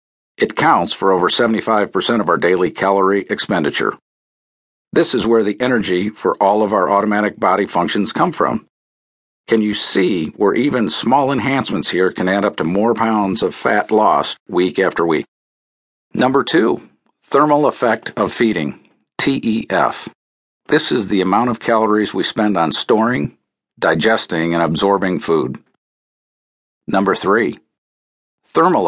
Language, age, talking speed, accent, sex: English, 50-69, 140 wpm, American, male